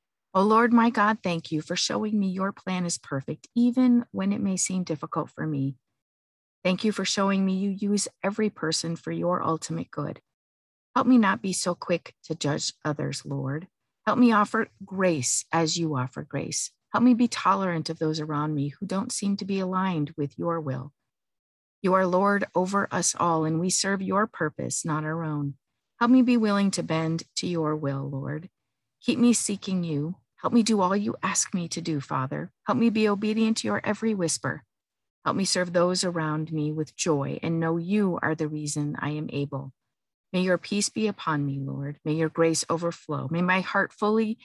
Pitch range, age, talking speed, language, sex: 150-195 Hz, 50-69, 200 wpm, English, female